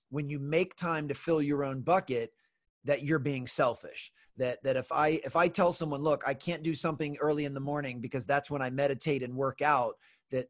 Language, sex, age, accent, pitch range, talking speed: English, male, 30-49, American, 130-160 Hz, 225 wpm